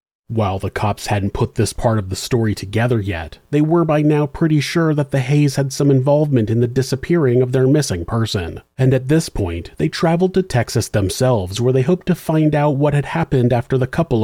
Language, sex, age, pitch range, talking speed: English, male, 30-49, 105-150 Hz, 220 wpm